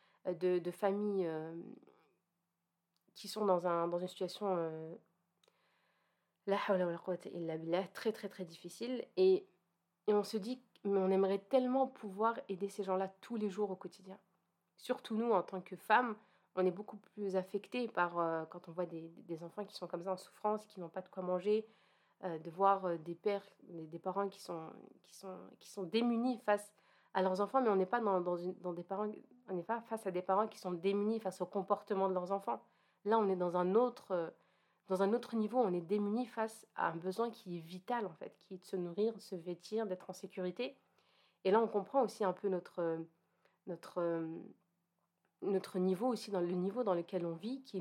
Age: 30-49